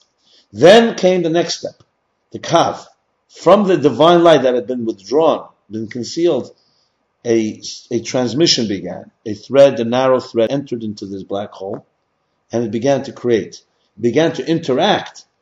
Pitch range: 115-180 Hz